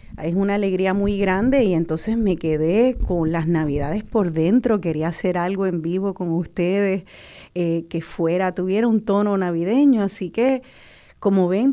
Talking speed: 165 wpm